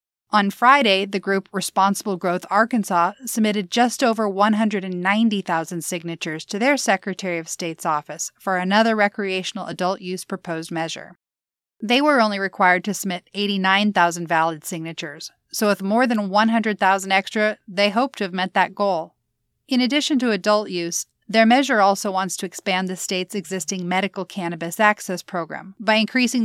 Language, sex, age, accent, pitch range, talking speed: English, female, 30-49, American, 170-215 Hz, 150 wpm